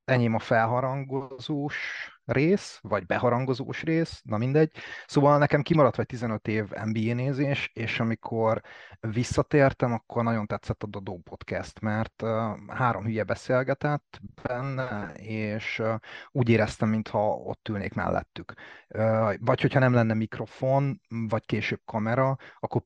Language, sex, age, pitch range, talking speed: Hungarian, male, 30-49, 105-130 Hz, 125 wpm